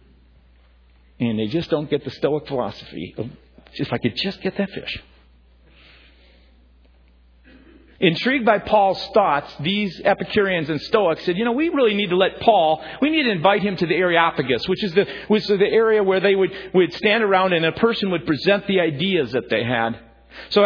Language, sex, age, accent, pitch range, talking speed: English, male, 50-69, American, 125-195 Hz, 185 wpm